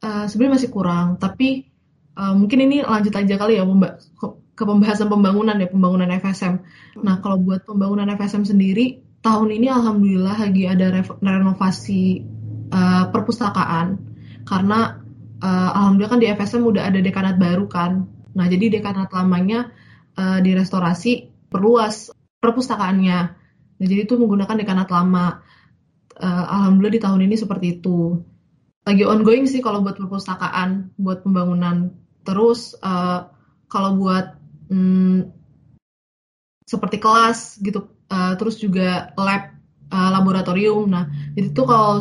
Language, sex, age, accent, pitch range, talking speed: Indonesian, female, 20-39, native, 180-210 Hz, 130 wpm